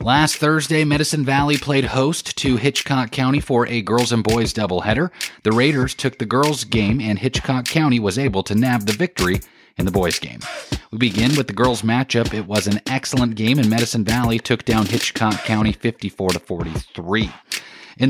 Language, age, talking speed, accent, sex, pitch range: English, 30-49, 180 wpm, American, male, 105-130 Hz